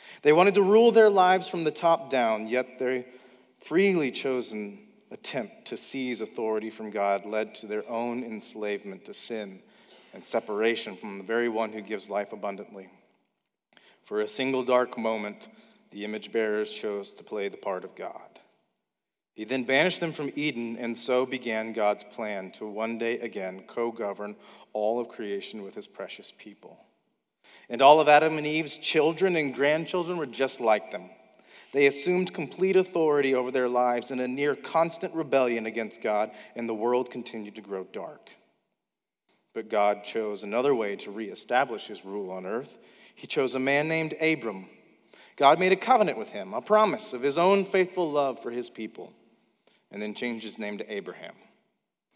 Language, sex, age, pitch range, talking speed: English, male, 40-59, 110-150 Hz, 170 wpm